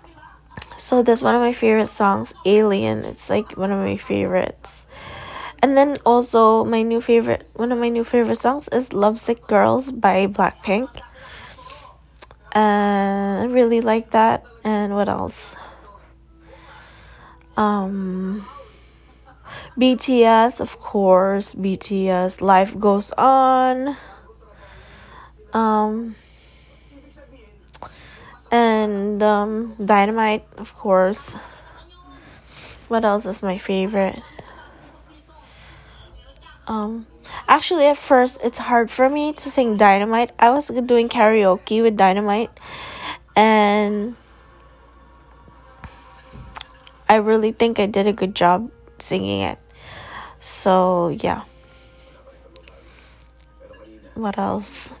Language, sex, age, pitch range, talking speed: English, female, 10-29, 195-235 Hz, 100 wpm